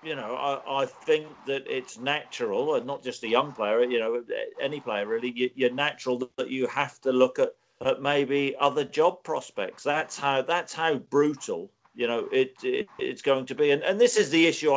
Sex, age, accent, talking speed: male, 40-59, British, 210 wpm